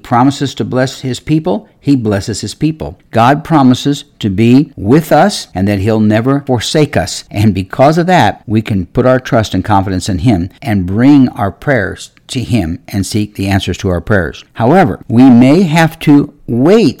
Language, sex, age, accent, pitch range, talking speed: English, male, 60-79, American, 105-140 Hz, 185 wpm